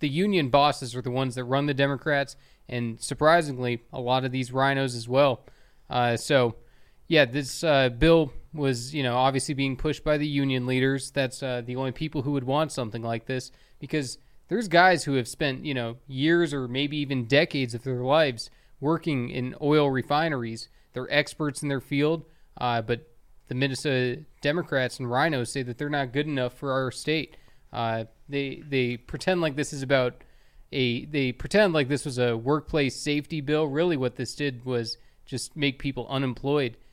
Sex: male